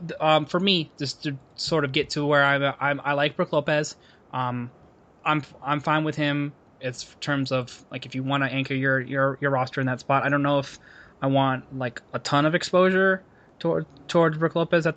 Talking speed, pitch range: 215 wpm, 130-150 Hz